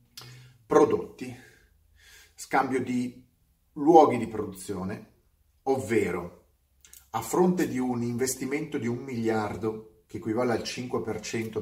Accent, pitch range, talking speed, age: native, 100-135 Hz, 100 wpm, 40-59